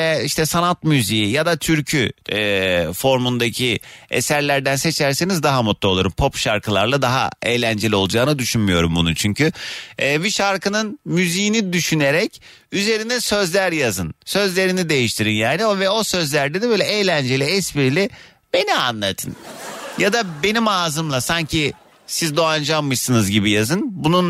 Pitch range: 120-175 Hz